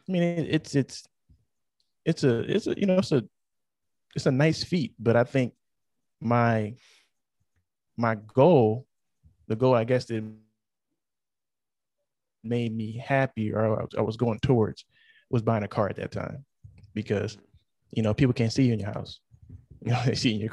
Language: English